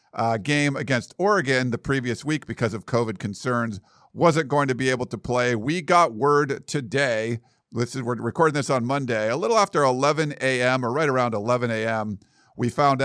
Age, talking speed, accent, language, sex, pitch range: 50-69, 185 wpm, American, English, male, 115-140 Hz